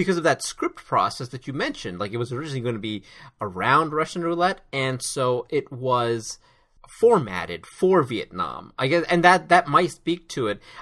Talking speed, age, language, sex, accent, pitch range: 185 wpm, 30-49, English, male, American, 125-210 Hz